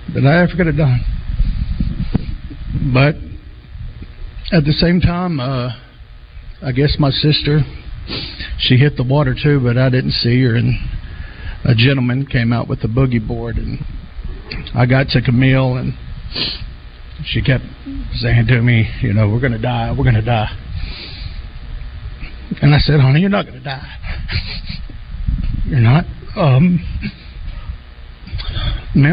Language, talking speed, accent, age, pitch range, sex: English, 140 wpm, American, 60-79, 105-140 Hz, male